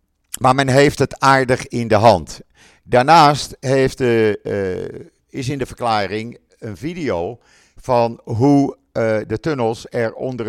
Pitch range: 105-135 Hz